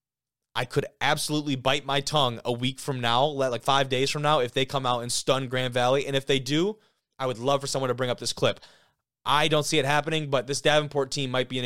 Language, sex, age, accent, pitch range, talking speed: English, male, 20-39, American, 120-150 Hz, 250 wpm